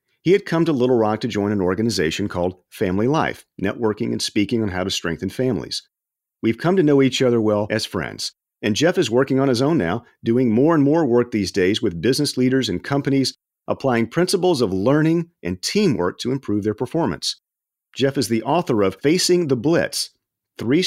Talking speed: 200 wpm